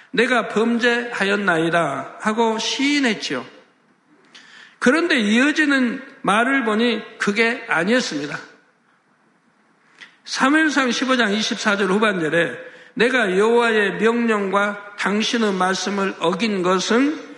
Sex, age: male, 60-79